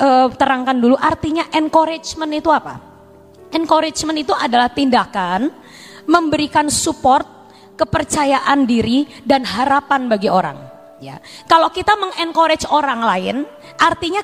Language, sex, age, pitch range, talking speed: Indonesian, female, 20-39, 265-335 Hz, 105 wpm